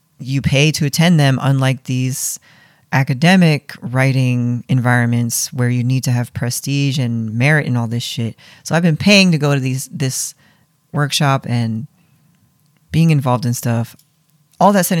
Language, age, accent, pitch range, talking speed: English, 40-59, American, 125-155 Hz, 160 wpm